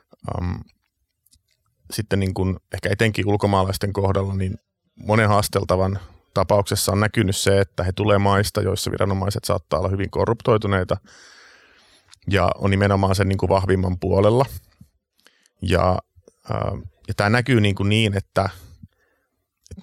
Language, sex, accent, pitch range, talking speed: Finnish, male, native, 95-105 Hz, 125 wpm